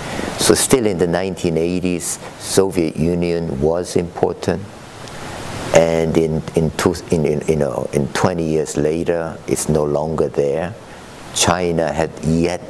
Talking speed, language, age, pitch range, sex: 130 wpm, English, 50-69, 80-100 Hz, male